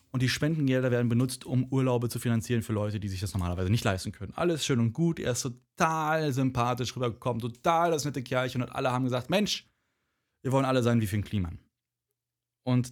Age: 20-39